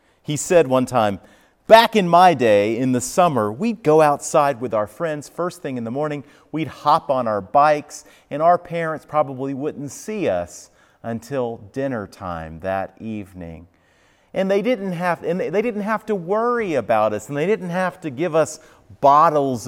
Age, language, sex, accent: 40-59, English, male, American